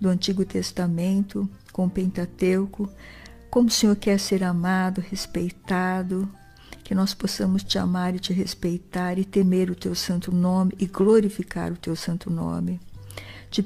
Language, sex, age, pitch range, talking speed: Portuguese, female, 60-79, 180-205 Hz, 150 wpm